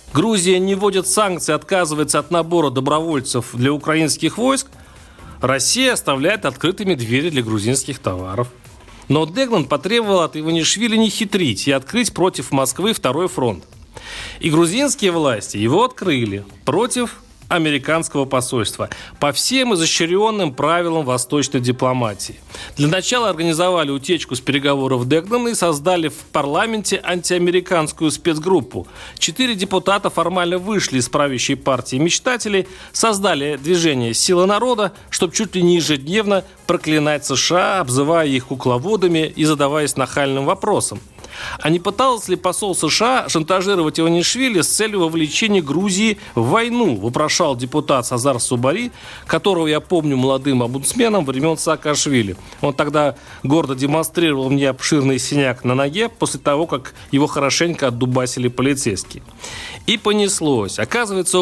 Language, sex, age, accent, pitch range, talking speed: Russian, male, 40-59, native, 135-190 Hz, 125 wpm